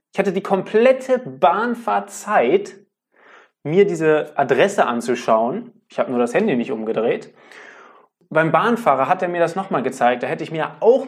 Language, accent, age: German, German, 20-39